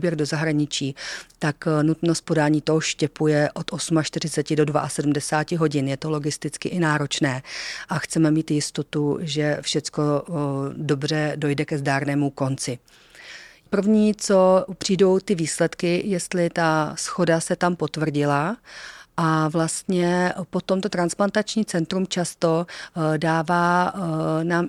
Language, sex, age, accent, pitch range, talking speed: Czech, female, 40-59, native, 150-175 Hz, 115 wpm